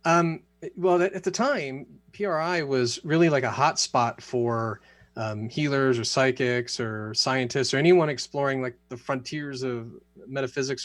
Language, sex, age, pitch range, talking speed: English, male, 30-49, 115-140 Hz, 150 wpm